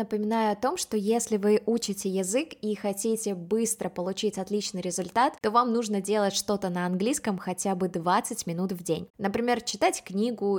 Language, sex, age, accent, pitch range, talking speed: Russian, female, 20-39, native, 190-225 Hz, 170 wpm